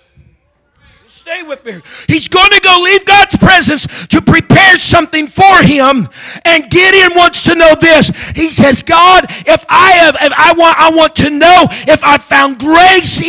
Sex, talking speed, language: male, 165 wpm, English